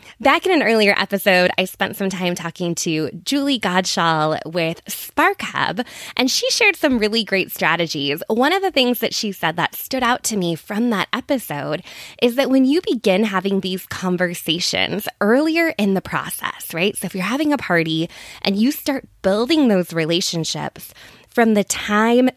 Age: 20-39